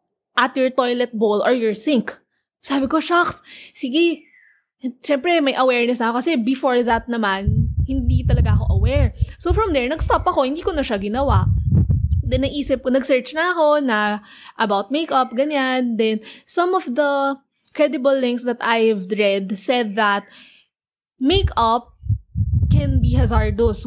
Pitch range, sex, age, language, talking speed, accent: 210-275 Hz, female, 20-39, English, 145 wpm, Filipino